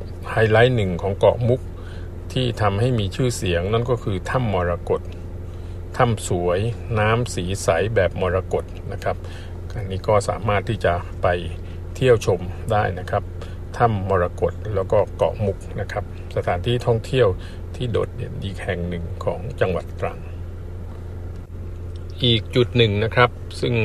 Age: 60-79